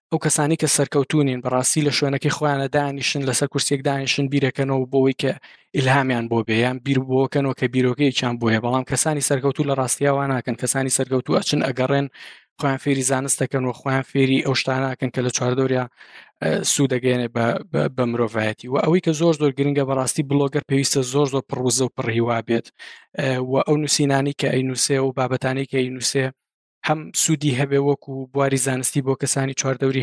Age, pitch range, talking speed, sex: 20-39, 130-140 Hz, 175 wpm, male